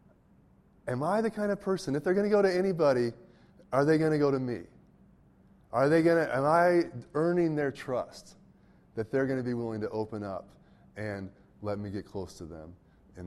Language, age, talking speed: English, 30-49, 210 wpm